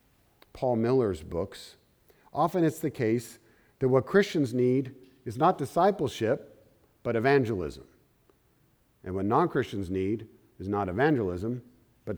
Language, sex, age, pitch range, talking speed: English, male, 50-69, 115-165 Hz, 120 wpm